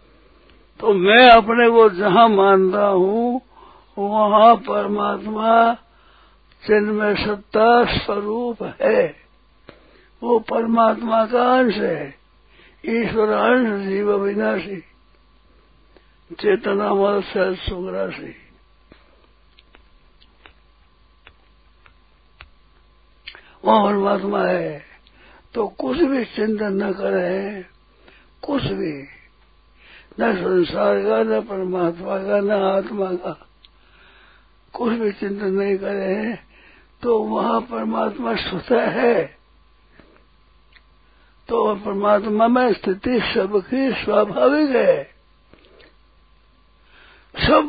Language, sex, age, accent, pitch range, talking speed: Hindi, male, 60-79, native, 190-225 Hz, 85 wpm